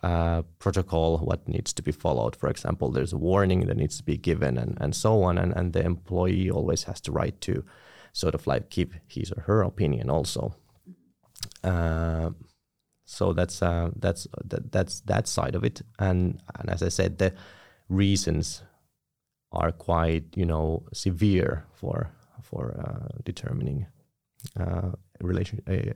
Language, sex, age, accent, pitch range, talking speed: Finnish, male, 30-49, native, 85-105 Hz, 155 wpm